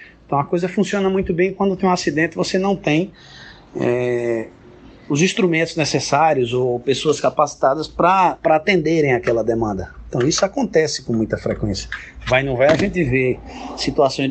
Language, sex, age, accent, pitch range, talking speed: Portuguese, male, 20-39, Brazilian, 115-160 Hz, 155 wpm